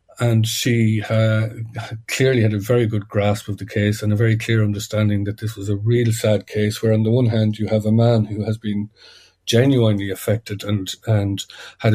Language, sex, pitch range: English, male, 110-115 Hz